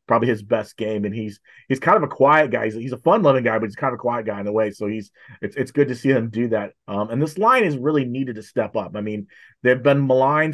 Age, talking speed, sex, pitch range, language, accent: 30-49, 295 wpm, male, 105-130 Hz, English, American